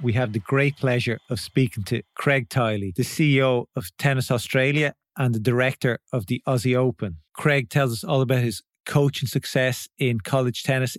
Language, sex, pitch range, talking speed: English, male, 125-140 Hz, 180 wpm